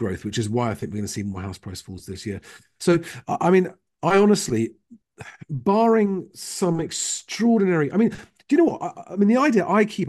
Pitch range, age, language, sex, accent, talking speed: 130-190 Hz, 40-59, English, male, British, 220 wpm